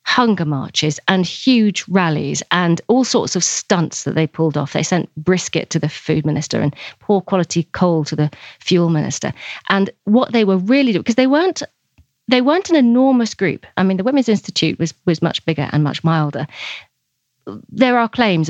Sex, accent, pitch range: female, British, 160-210 Hz